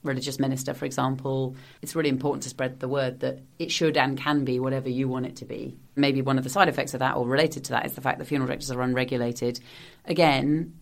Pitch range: 130-145 Hz